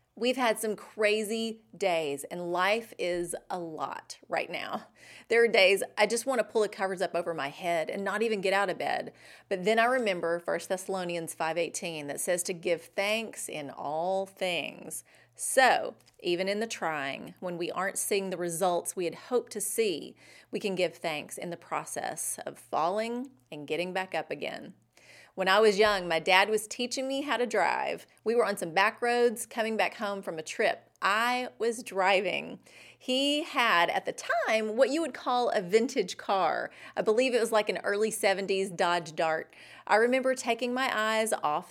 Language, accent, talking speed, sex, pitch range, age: English, American, 190 wpm, female, 175-230 Hz, 30-49